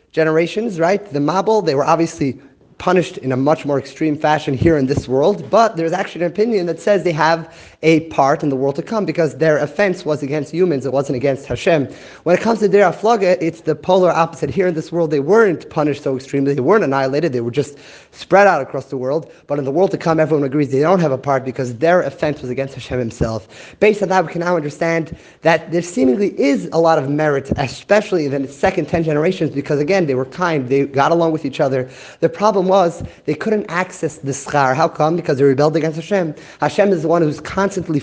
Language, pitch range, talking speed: English, 145-185 Hz, 230 wpm